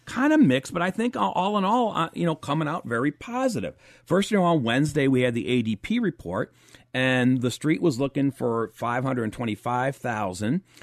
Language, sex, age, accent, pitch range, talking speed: English, male, 50-69, American, 115-150 Hz, 175 wpm